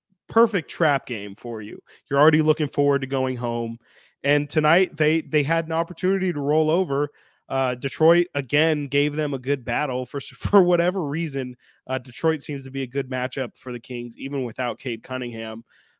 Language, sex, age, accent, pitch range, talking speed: English, male, 20-39, American, 125-150 Hz, 185 wpm